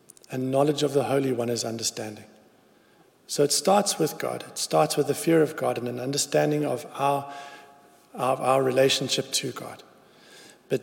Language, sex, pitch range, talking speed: English, male, 125-155 Hz, 165 wpm